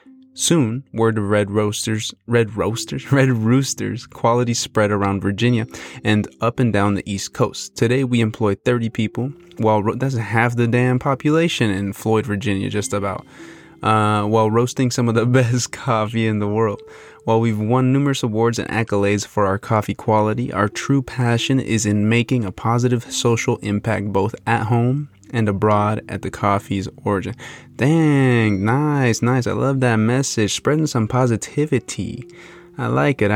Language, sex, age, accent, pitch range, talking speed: English, male, 20-39, American, 105-130 Hz, 160 wpm